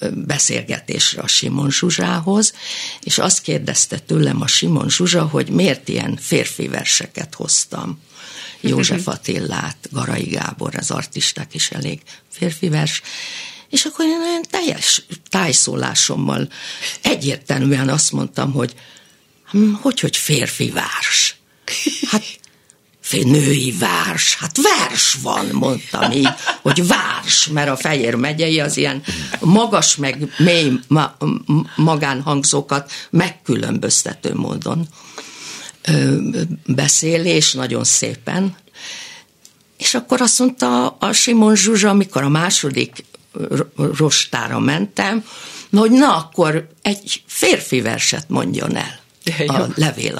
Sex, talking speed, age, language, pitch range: female, 105 wpm, 50-69, Hungarian, 140-210 Hz